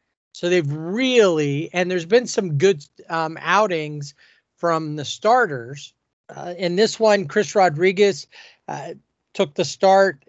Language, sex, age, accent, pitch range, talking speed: English, male, 40-59, American, 145-180 Hz, 135 wpm